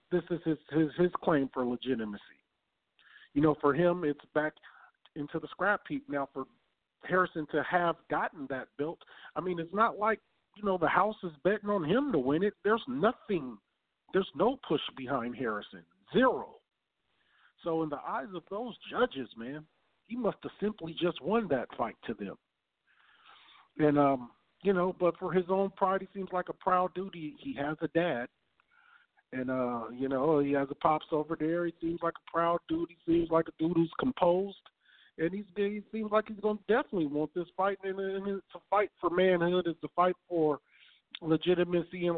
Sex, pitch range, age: male, 145-185 Hz, 50-69